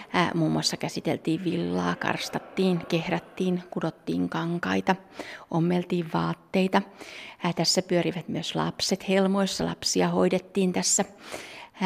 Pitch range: 155-185 Hz